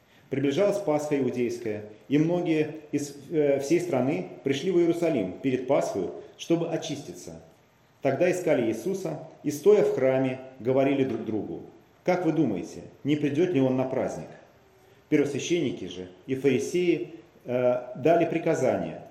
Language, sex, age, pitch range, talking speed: Russian, male, 40-59, 125-155 Hz, 125 wpm